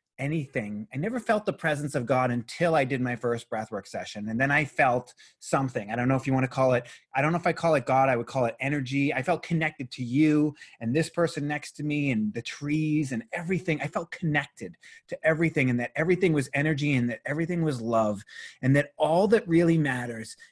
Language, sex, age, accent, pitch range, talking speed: English, male, 30-49, American, 120-170 Hz, 230 wpm